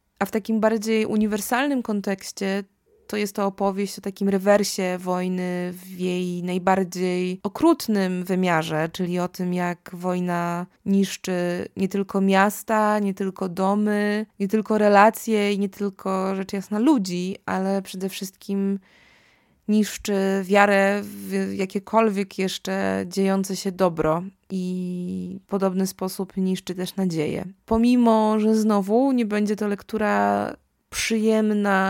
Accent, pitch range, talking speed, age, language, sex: native, 185-210 Hz, 125 wpm, 20-39, Polish, female